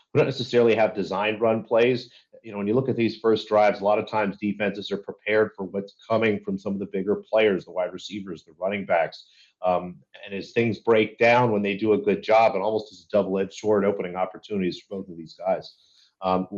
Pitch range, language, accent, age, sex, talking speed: 100-115 Hz, English, American, 40-59, male, 225 wpm